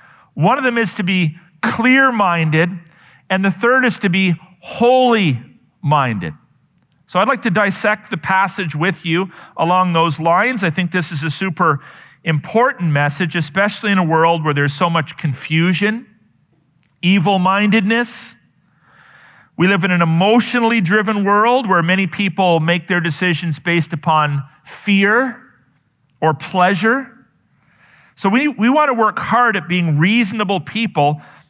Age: 40-59